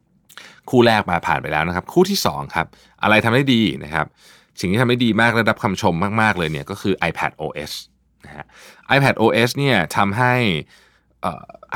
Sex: male